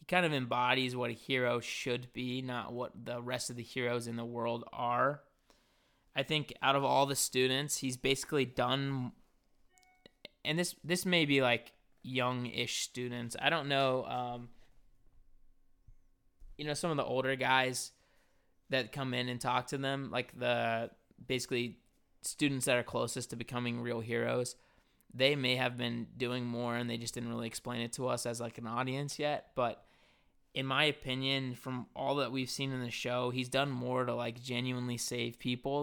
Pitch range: 120-135 Hz